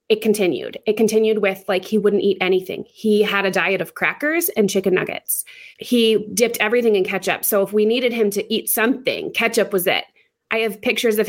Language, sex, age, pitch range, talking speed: English, female, 20-39, 200-250 Hz, 205 wpm